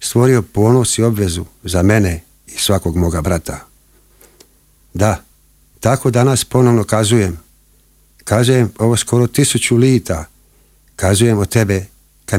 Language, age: Croatian, 50-69